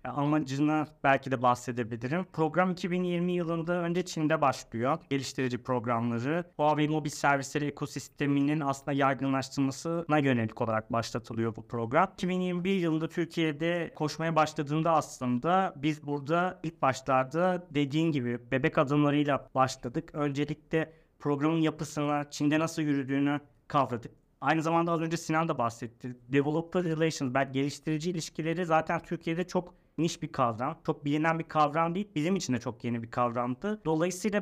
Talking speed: 135 wpm